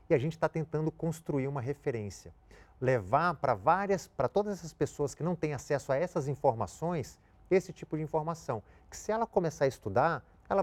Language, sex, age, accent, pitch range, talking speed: Portuguese, male, 40-59, Brazilian, 115-160 Hz, 185 wpm